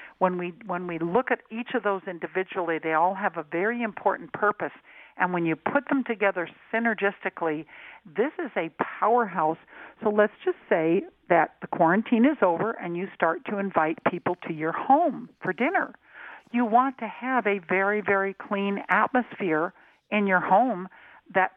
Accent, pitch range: American, 180-235 Hz